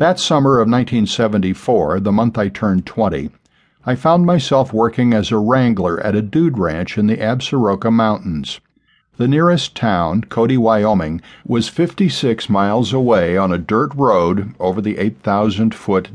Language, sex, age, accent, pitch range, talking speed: English, male, 50-69, American, 100-125 Hz, 150 wpm